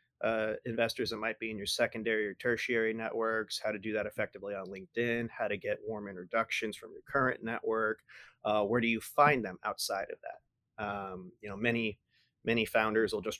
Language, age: English, 30-49